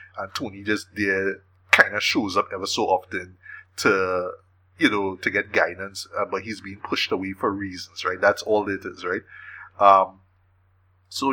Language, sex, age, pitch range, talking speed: English, male, 20-39, 95-115 Hz, 175 wpm